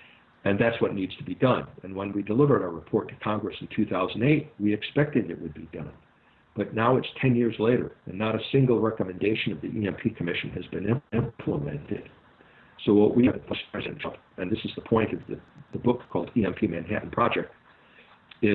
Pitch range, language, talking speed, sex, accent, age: 100-120 Hz, English, 190 wpm, male, American, 60-79